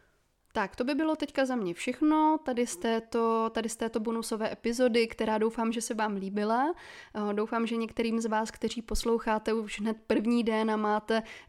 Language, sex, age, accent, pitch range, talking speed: Czech, female, 20-39, native, 205-230 Hz, 185 wpm